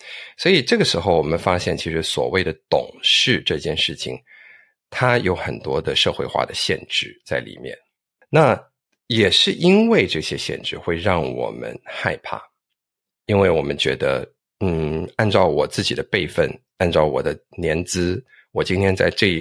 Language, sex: Chinese, male